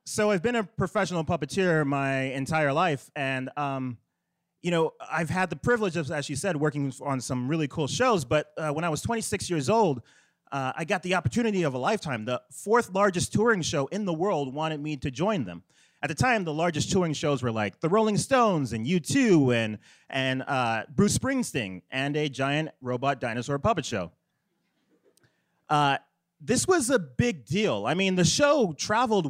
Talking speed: 190 wpm